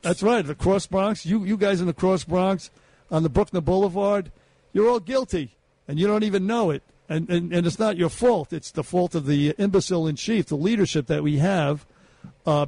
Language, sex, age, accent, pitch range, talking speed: English, male, 50-69, American, 150-185 Hz, 220 wpm